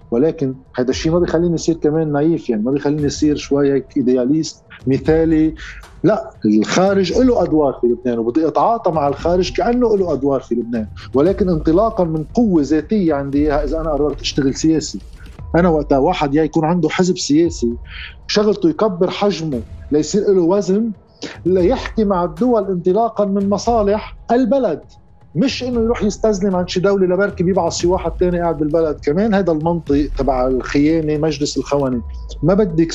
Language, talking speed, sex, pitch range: Arabic, 155 wpm, male, 130-185 Hz